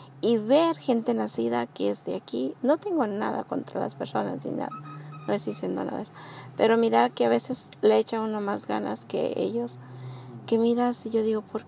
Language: Spanish